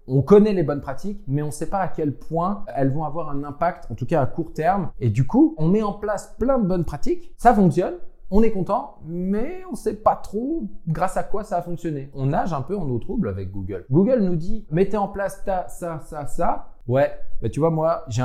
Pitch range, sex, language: 130-175 Hz, male, French